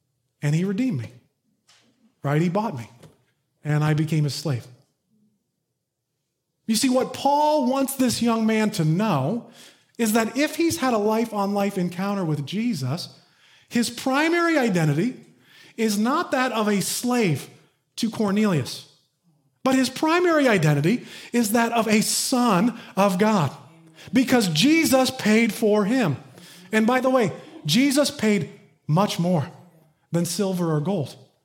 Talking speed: 135 wpm